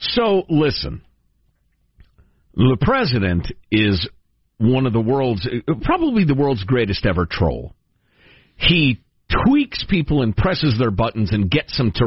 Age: 50-69